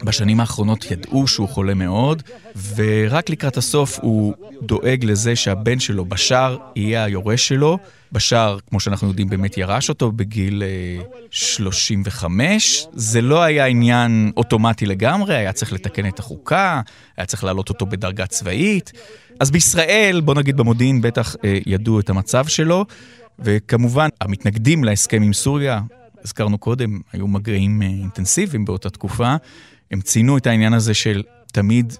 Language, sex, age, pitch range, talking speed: Hebrew, male, 30-49, 100-125 Hz, 135 wpm